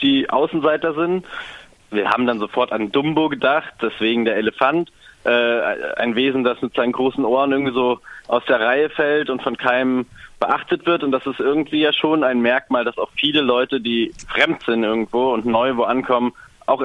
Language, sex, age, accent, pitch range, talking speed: German, male, 30-49, German, 115-150 Hz, 190 wpm